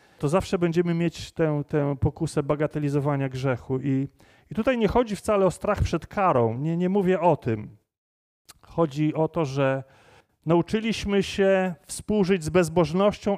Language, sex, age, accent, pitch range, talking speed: Polish, male, 30-49, native, 140-185 Hz, 150 wpm